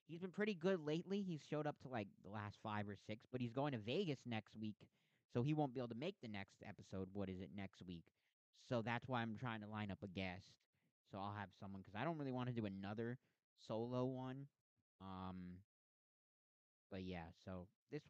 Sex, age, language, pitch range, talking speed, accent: male, 20-39, English, 95-130 Hz, 220 wpm, American